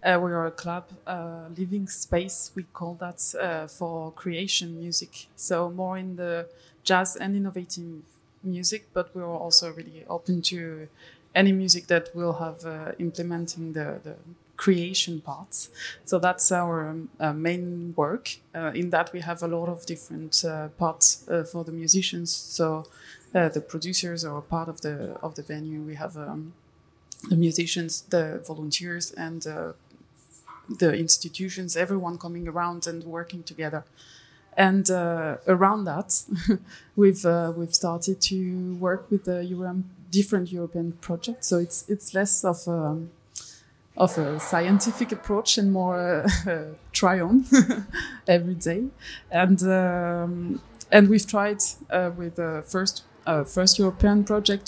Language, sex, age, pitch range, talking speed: French, female, 20-39, 165-185 Hz, 150 wpm